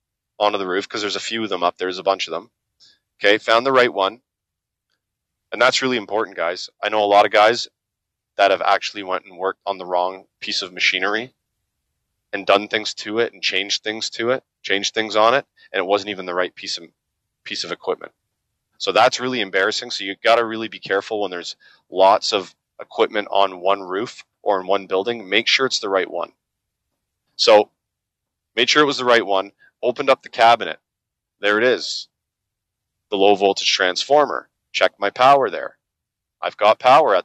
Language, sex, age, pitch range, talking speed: English, male, 20-39, 95-115 Hz, 200 wpm